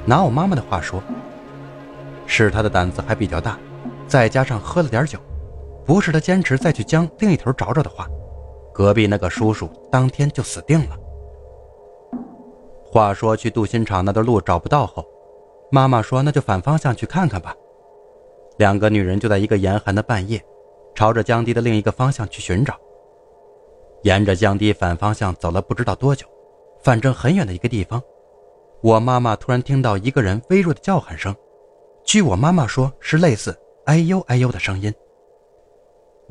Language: Chinese